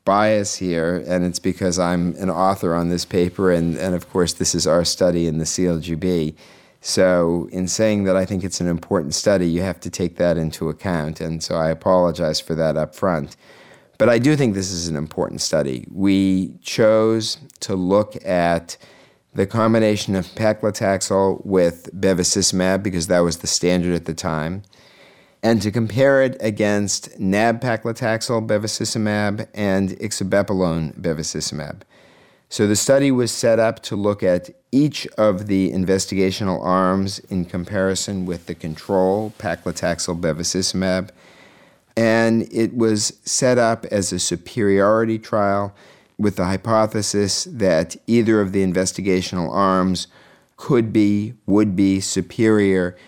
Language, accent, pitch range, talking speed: English, American, 90-105 Hz, 145 wpm